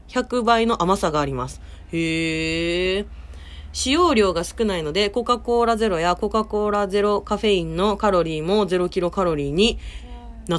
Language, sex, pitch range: Japanese, female, 175-265 Hz